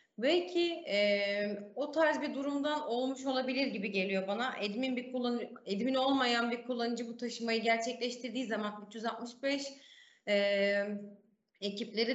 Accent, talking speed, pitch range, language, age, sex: native, 120 wpm, 215-305 Hz, Turkish, 30-49, female